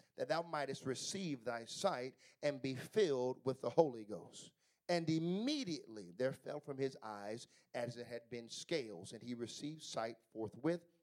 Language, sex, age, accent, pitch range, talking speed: English, male, 40-59, American, 130-170 Hz, 165 wpm